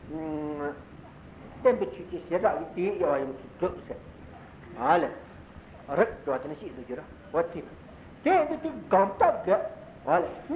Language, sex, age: Italian, male, 60-79